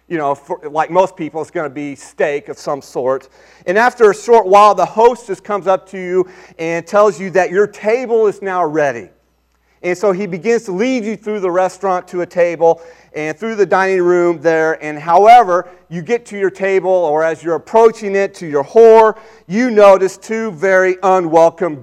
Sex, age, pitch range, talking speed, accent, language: male, 40-59, 155-210 Hz, 200 wpm, American, English